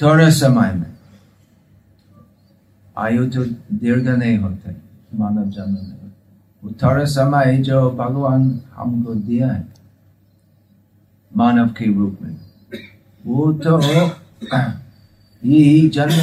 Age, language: 50-69, Hindi